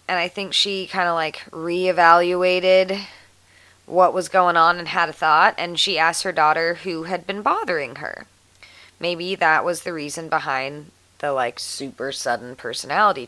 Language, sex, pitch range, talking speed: English, female, 140-195 Hz, 165 wpm